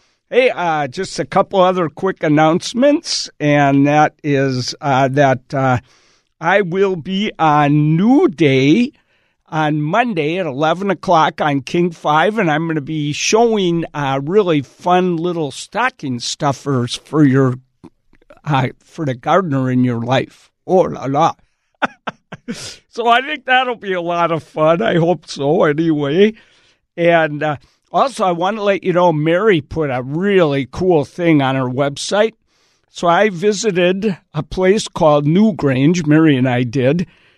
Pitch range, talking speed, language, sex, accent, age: 145-185 Hz, 150 wpm, English, male, American, 60-79